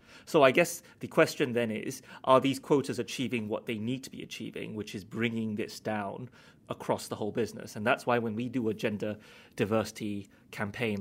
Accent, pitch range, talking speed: British, 105-120 Hz, 195 wpm